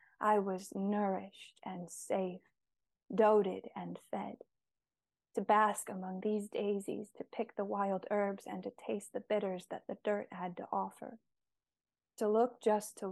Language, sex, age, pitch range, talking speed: English, female, 20-39, 190-215 Hz, 150 wpm